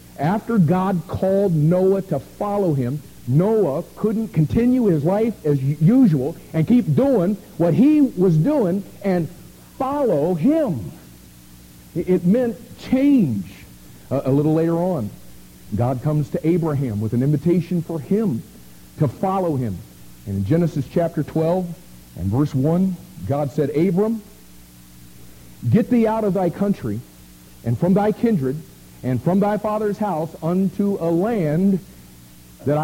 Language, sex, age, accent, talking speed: English, male, 50-69, American, 135 wpm